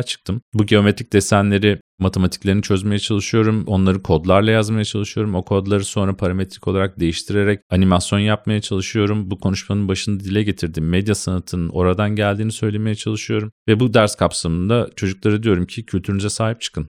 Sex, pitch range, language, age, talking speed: male, 90-105 Hz, Turkish, 40-59, 145 wpm